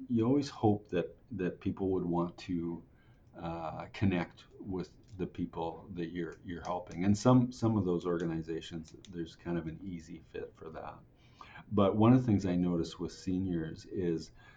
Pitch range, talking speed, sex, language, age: 85-105 Hz, 175 wpm, male, English, 50-69